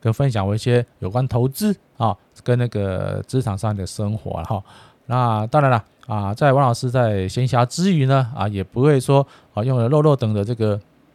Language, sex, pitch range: Chinese, male, 105-130 Hz